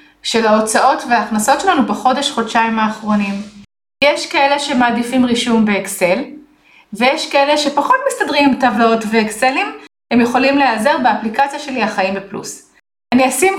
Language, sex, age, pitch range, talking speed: Hebrew, female, 30-49, 215-280 Hz, 120 wpm